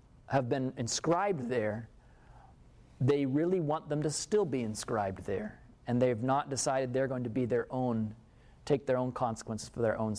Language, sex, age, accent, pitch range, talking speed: English, male, 40-59, American, 125-190 Hz, 175 wpm